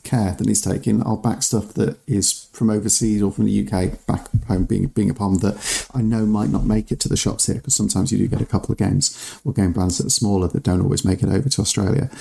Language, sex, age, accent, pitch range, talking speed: English, male, 40-59, British, 95-115 Hz, 270 wpm